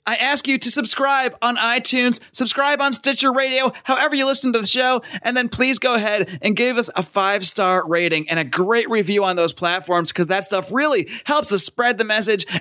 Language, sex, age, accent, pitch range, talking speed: English, male, 30-49, American, 175-240 Hz, 210 wpm